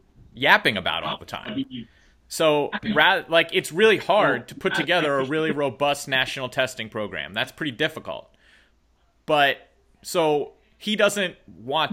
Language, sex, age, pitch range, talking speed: English, male, 30-49, 130-160 Hz, 135 wpm